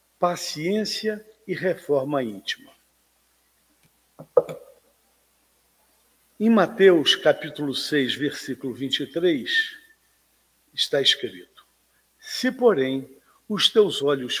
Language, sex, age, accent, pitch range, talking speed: Portuguese, male, 50-69, Brazilian, 140-215 Hz, 70 wpm